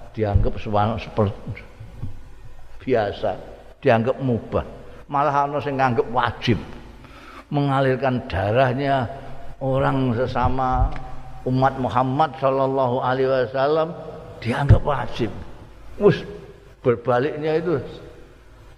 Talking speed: 70 wpm